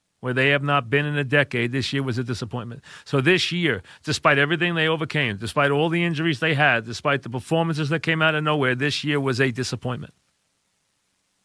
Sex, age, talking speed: male, 40-59, 205 wpm